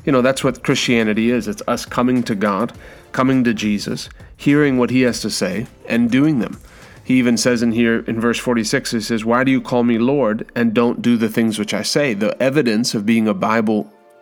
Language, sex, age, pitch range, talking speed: English, male, 30-49, 115-130 Hz, 225 wpm